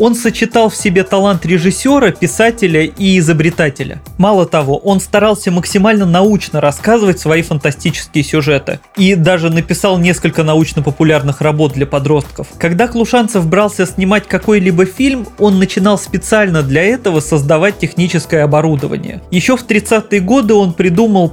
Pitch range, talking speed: 155-200 Hz, 130 wpm